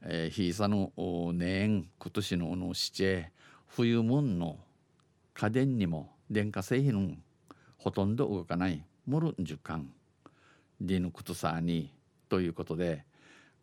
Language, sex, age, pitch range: Japanese, male, 50-69, 90-110 Hz